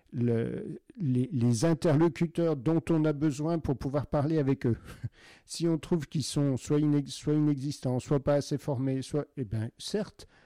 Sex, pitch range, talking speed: male, 115-150 Hz, 170 wpm